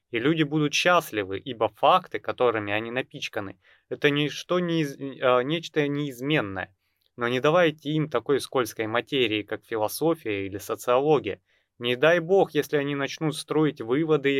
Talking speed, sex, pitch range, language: 140 wpm, male, 110-155 Hz, Russian